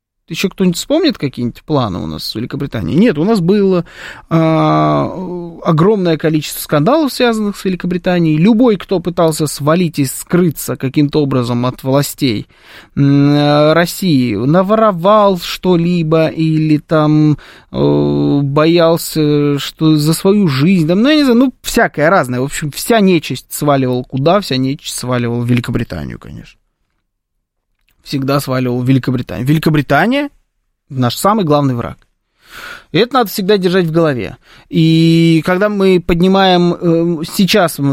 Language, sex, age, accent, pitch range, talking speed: Russian, male, 20-39, native, 125-175 Hz, 130 wpm